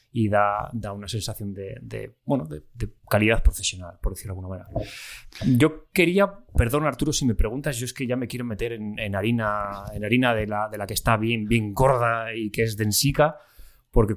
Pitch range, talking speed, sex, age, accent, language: 105-125 Hz, 210 wpm, male, 20-39, Spanish, Spanish